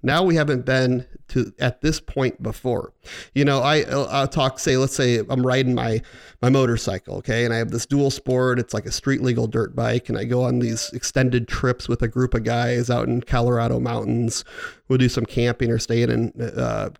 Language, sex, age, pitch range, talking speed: English, male, 30-49, 120-150 Hz, 210 wpm